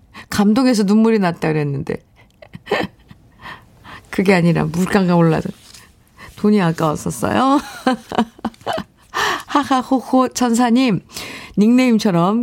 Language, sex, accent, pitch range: Korean, female, native, 150-225 Hz